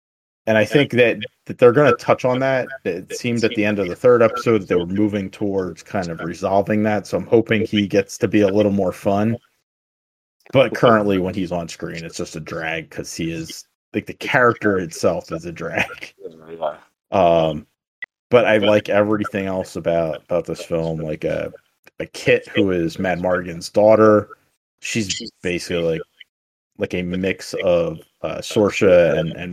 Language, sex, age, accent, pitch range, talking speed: English, male, 30-49, American, 85-115 Hz, 185 wpm